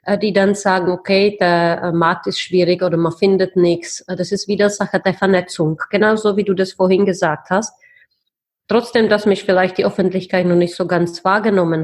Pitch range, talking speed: 185-225 Hz, 180 wpm